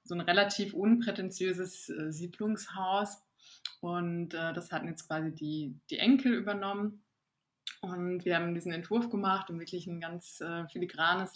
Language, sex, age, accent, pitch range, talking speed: English, female, 20-39, German, 170-200 Hz, 150 wpm